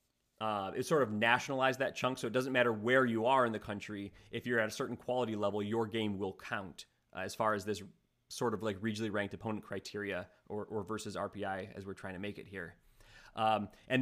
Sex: male